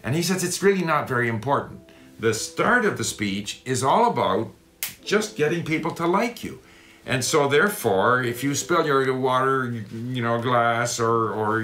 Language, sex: English, male